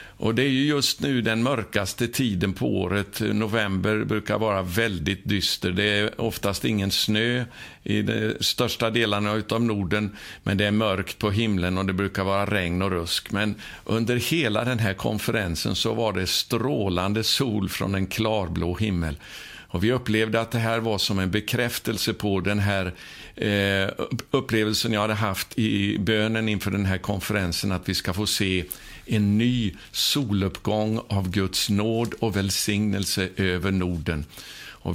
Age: 50-69